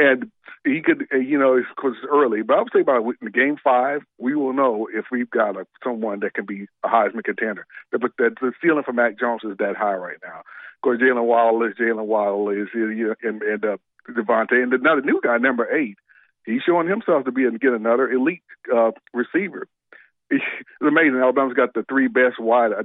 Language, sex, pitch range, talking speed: English, male, 110-135 Hz, 200 wpm